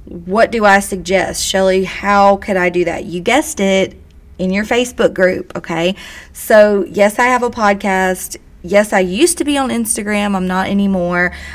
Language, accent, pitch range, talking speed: English, American, 185-220 Hz, 175 wpm